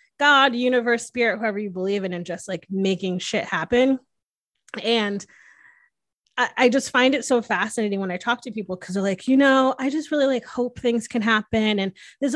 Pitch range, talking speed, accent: 180-245 Hz, 200 wpm, American